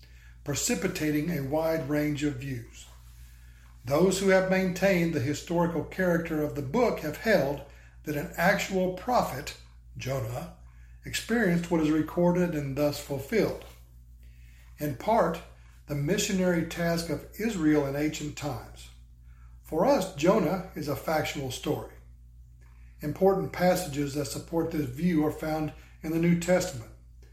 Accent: American